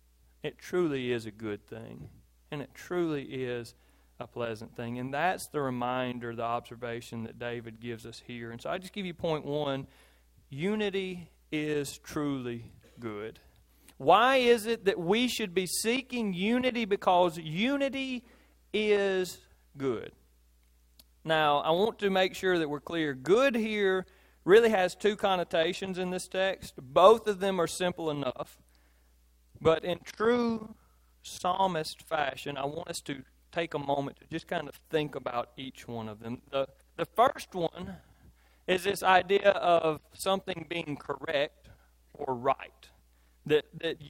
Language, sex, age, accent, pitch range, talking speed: English, male, 40-59, American, 120-190 Hz, 150 wpm